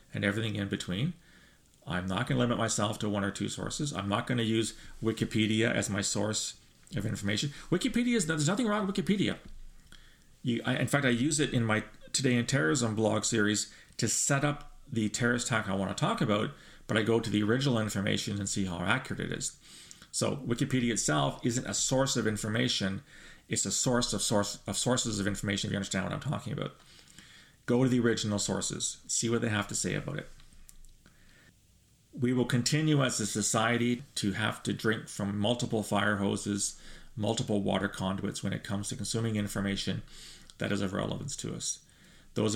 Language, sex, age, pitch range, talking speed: English, male, 40-59, 100-120 Hz, 190 wpm